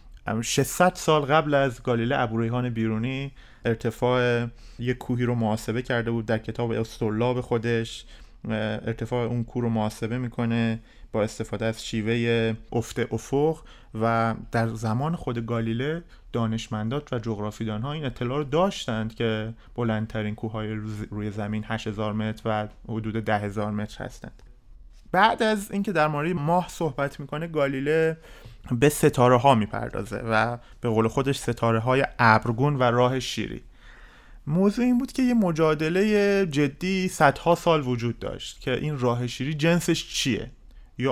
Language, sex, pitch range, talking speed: Persian, male, 115-150 Hz, 140 wpm